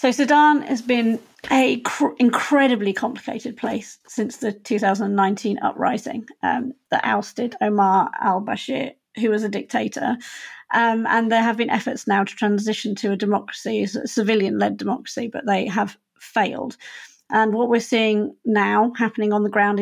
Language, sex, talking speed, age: English, female, 150 wpm, 40-59